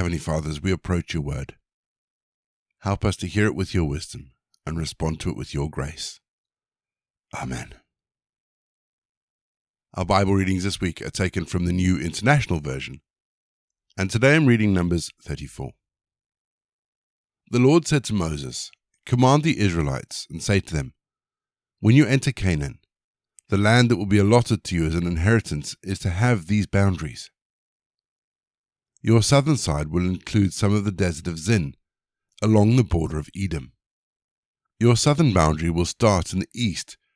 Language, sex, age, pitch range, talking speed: English, male, 50-69, 80-110 Hz, 155 wpm